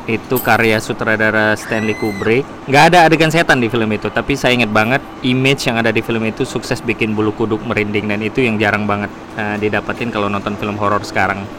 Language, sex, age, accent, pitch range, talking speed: Indonesian, male, 20-39, native, 105-125 Hz, 200 wpm